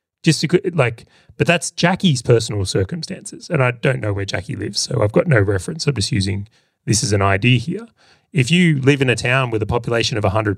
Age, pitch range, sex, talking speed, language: 30-49, 105-145 Hz, male, 220 wpm, English